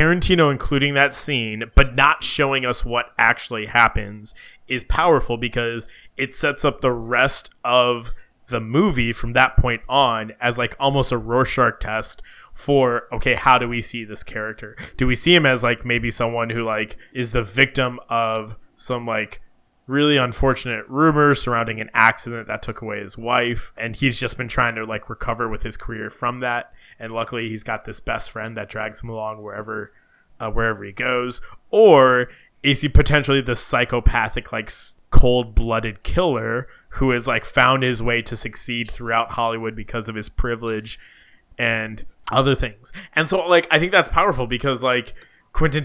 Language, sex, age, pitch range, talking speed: English, male, 20-39, 115-130 Hz, 175 wpm